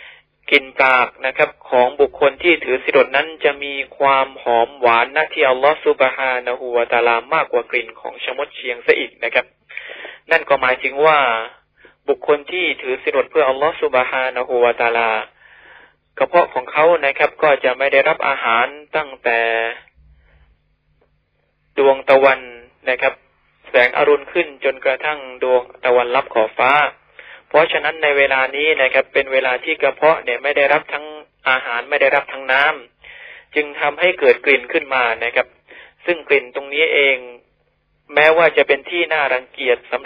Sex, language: male, Thai